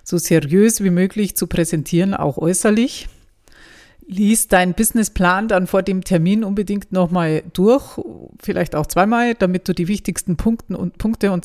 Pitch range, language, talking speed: 160-190 Hz, German, 140 wpm